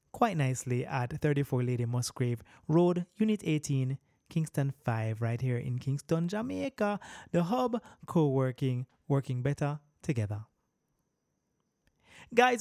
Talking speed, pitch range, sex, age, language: 110 wpm, 125-160 Hz, male, 20-39, English